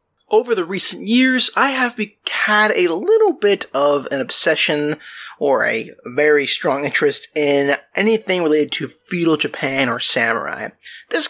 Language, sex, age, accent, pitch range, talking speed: English, male, 30-49, American, 145-230 Hz, 145 wpm